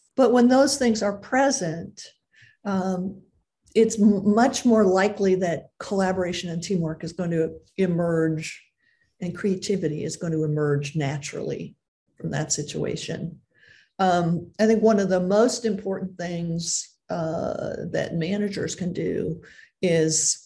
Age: 50-69